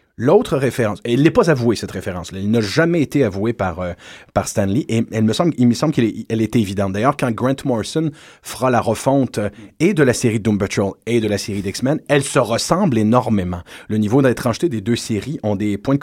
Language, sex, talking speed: French, male, 240 wpm